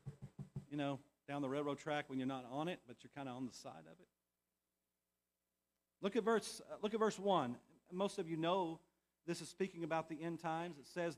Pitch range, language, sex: 140-220 Hz, English, male